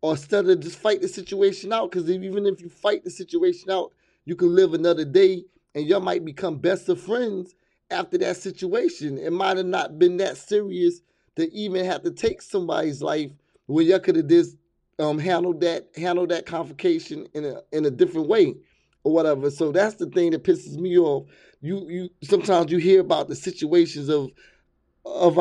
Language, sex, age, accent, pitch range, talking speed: English, male, 30-49, American, 155-200 Hz, 195 wpm